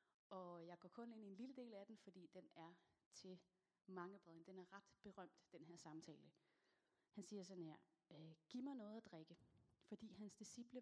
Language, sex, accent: Danish, female, native